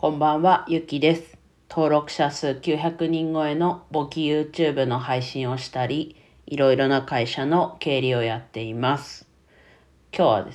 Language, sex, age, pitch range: Japanese, female, 40-59, 115-155 Hz